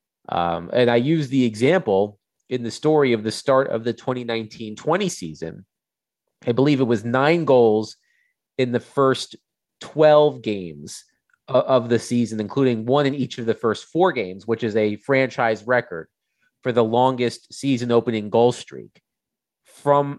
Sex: male